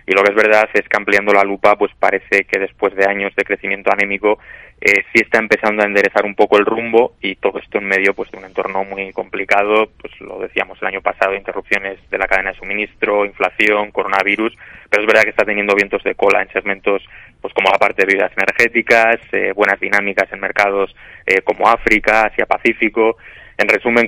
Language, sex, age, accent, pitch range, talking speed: Spanish, male, 20-39, Spanish, 100-110 Hz, 205 wpm